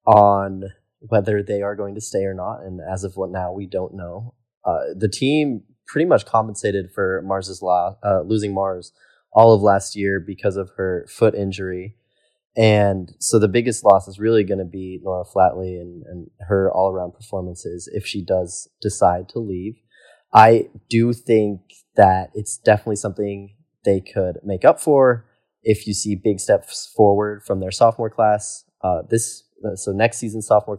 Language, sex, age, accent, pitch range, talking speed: English, male, 20-39, American, 95-115 Hz, 175 wpm